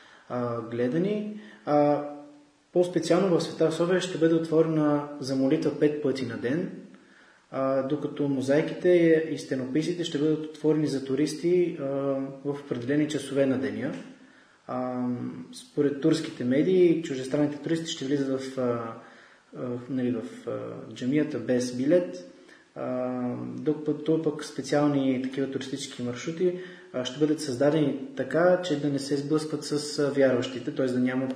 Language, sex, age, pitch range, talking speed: Bulgarian, male, 20-39, 130-155 Hz, 130 wpm